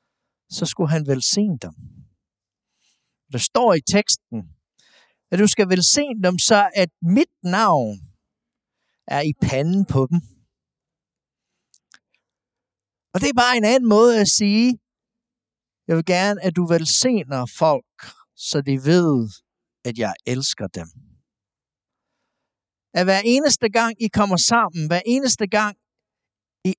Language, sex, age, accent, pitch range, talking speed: Danish, male, 60-79, native, 120-195 Hz, 130 wpm